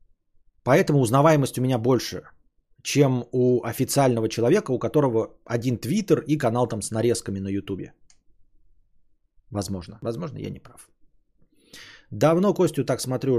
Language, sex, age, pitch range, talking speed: Bulgarian, male, 20-39, 100-140 Hz, 130 wpm